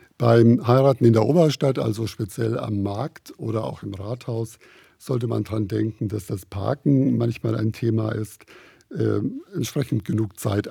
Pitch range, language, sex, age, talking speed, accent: 105-120 Hz, German, male, 50-69, 155 wpm, German